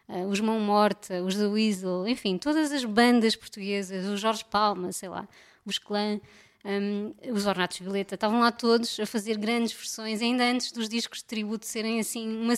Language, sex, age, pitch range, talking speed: Portuguese, female, 20-39, 190-230 Hz, 185 wpm